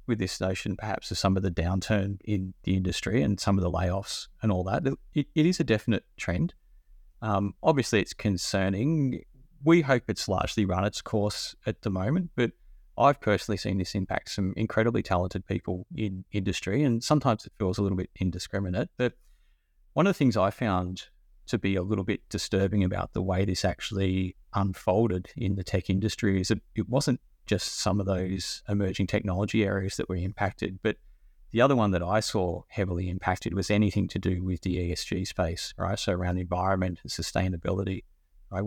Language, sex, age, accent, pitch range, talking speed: English, male, 30-49, Australian, 90-110 Hz, 190 wpm